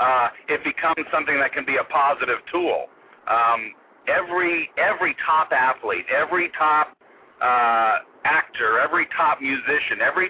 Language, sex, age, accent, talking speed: English, male, 50-69, American, 135 wpm